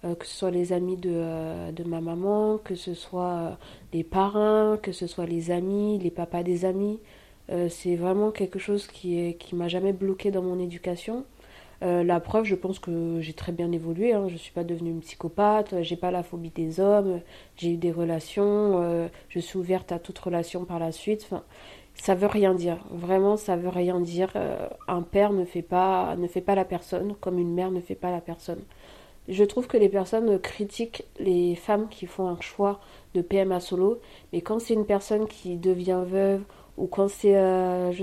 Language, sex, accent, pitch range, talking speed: French, female, French, 175-205 Hz, 210 wpm